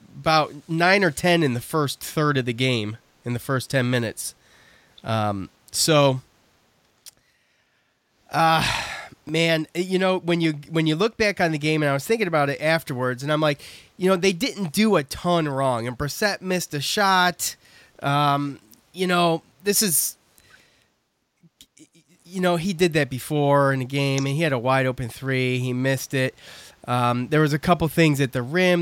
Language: English